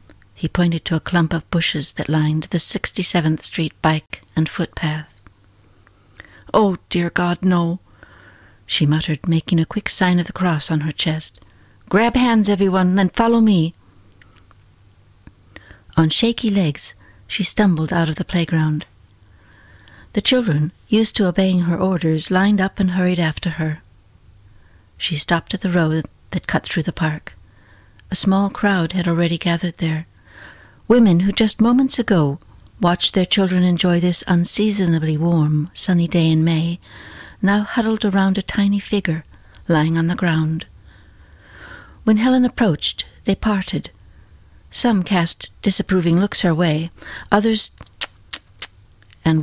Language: English